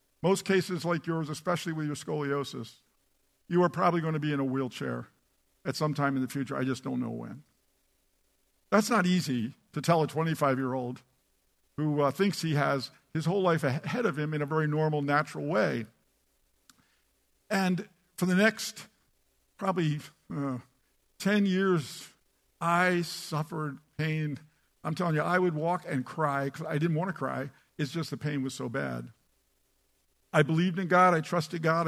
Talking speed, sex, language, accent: 170 wpm, male, English, American